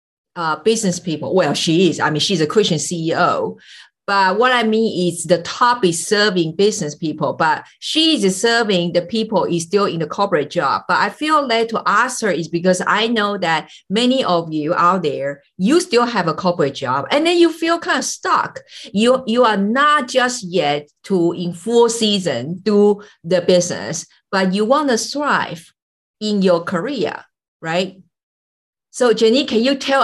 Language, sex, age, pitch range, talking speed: English, female, 50-69, 175-235 Hz, 185 wpm